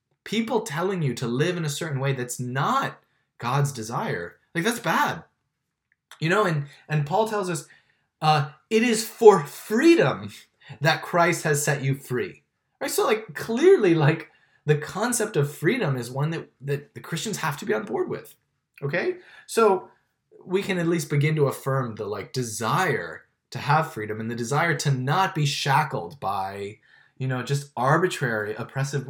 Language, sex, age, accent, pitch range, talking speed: English, male, 20-39, American, 135-185 Hz, 170 wpm